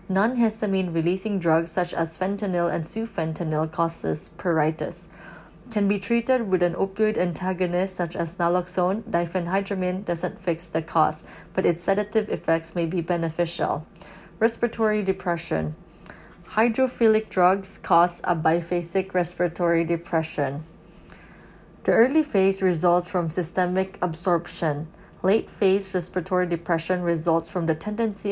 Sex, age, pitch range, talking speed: female, 20-39, 170-195 Hz, 115 wpm